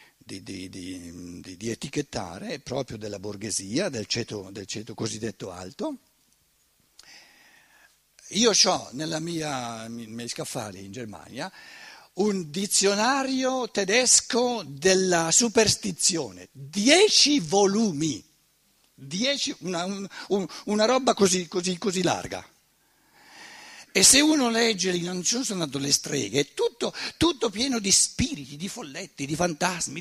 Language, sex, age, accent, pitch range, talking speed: Italian, male, 60-79, native, 135-225 Hz, 105 wpm